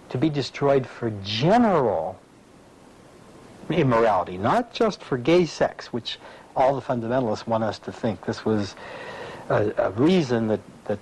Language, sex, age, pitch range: English, male, 60-79, 110-140 Hz